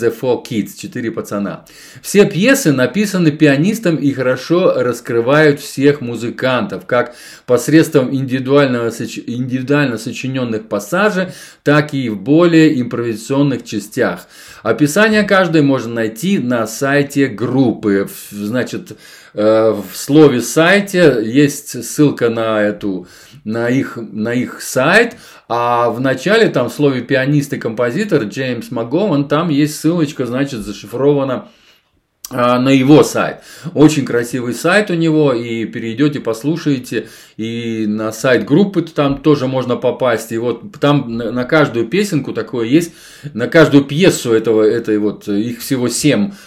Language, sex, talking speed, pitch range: Russian, male, 120 wpm, 115-150 Hz